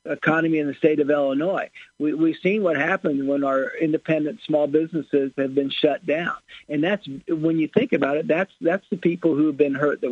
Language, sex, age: English, male, 50-69